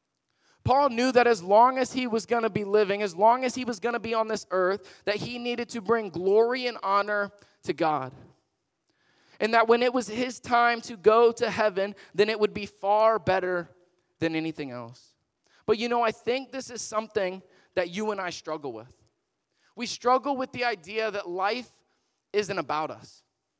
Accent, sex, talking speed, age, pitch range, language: American, male, 195 wpm, 20-39, 185-230 Hz, English